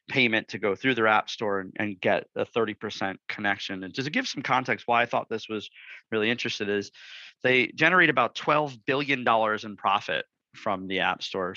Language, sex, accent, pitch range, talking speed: English, male, American, 105-125 Hz, 200 wpm